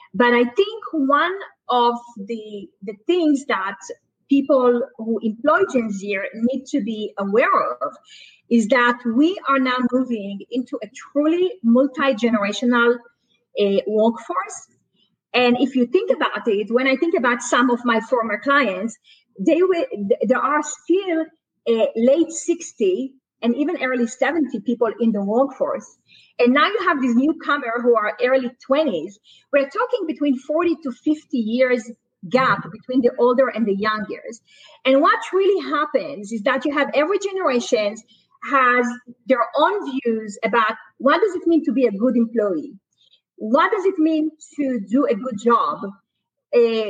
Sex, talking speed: female, 155 wpm